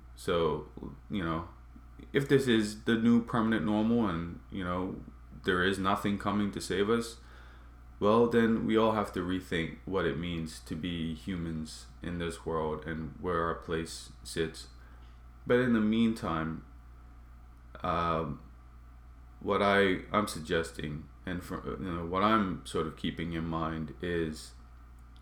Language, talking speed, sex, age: English, 150 wpm, male, 20-39